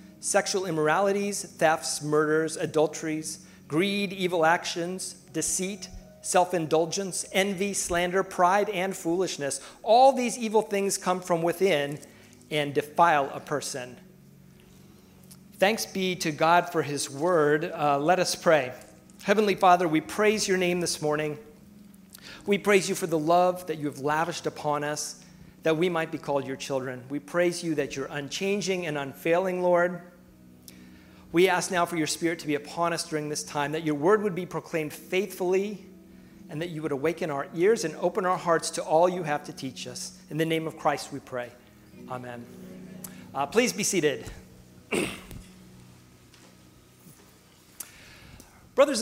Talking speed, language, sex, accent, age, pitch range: 150 wpm, English, male, American, 40-59, 150-185 Hz